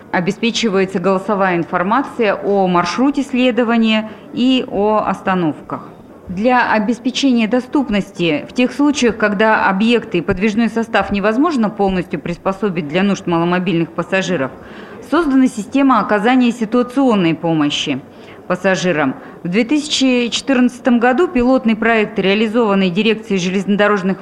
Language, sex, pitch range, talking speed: Russian, female, 185-250 Hz, 100 wpm